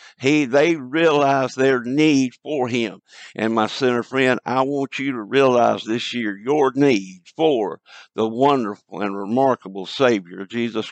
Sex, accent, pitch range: male, American, 120-160 Hz